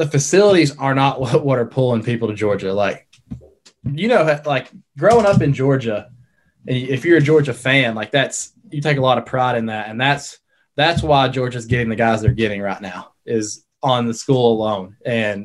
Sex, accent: male, American